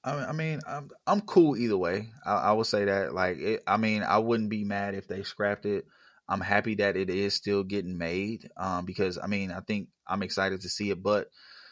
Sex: male